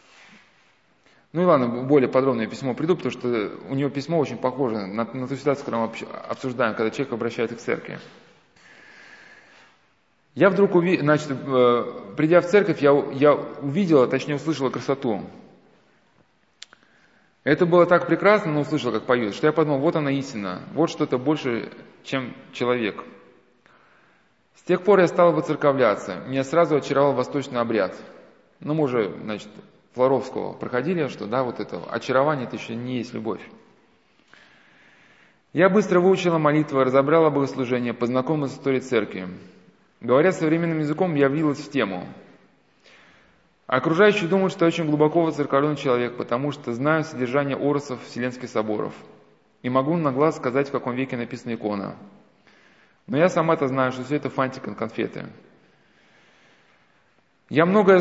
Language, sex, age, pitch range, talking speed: Russian, male, 20-39, 125-165 Hz, 145 wpm